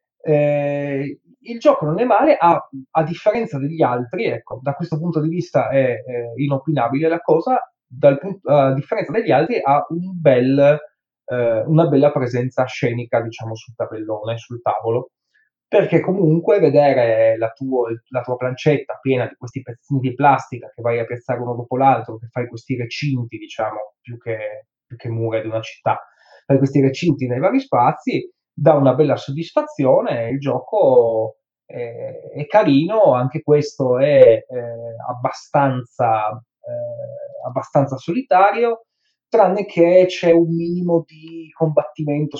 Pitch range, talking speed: 125-165 Hz, 145 wpm